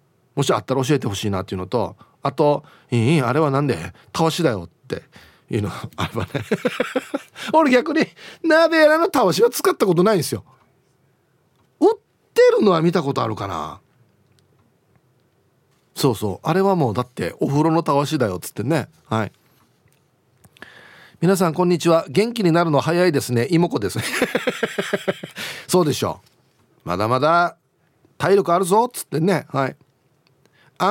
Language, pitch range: Japanese, 130-185 Hz